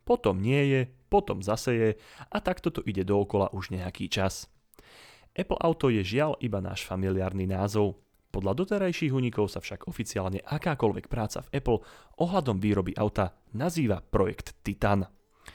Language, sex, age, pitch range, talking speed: Slovak, male, 30-49, 95-125 Hz, 145 wpm